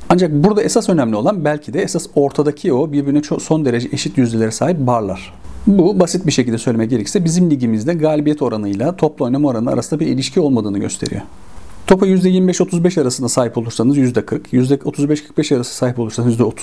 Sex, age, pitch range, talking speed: male, 40-59, 115-170 Hz, 165 wpm